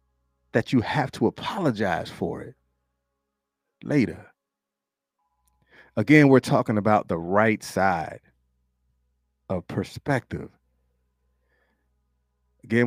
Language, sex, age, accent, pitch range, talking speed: English, male, 30-49, American, 70-115 Hz, 85 wpm